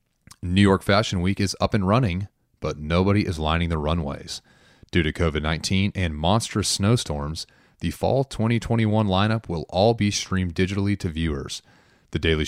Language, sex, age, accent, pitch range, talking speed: English, male, 30-49, American, 85-100 Hz, 160 wpm